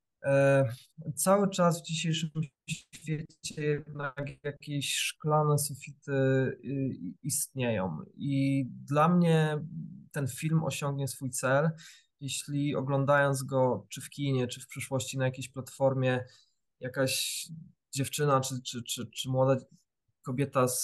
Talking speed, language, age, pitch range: 105 wpm, Polish, 20-39, 135-160 Hz